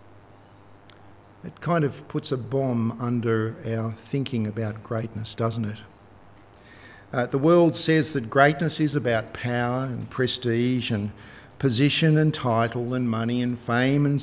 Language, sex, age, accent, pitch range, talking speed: English, male, 50-69, Australian, 100-140 Hz, 140 wpm